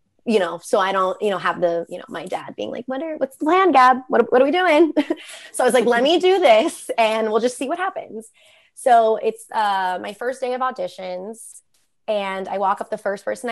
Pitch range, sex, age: 190-250 Hz, female, 20-39